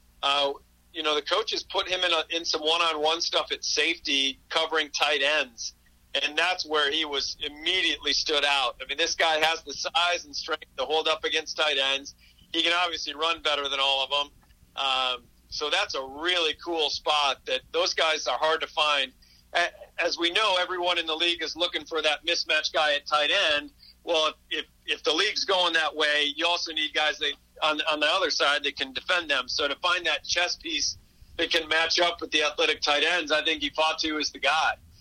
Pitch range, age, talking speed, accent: 145-170 Hz, 40-59, 215 wpm, American